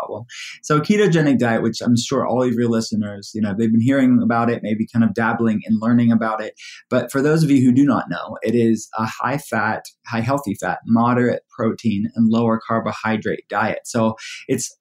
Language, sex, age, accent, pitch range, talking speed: English, male, 20-39, American, 110-135 Hz, 205 wpm